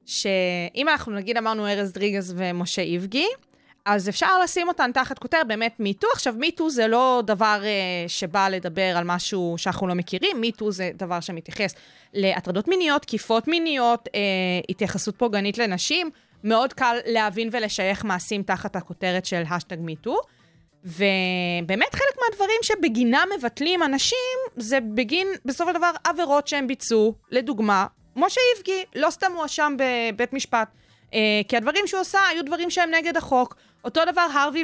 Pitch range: 200-290 Hz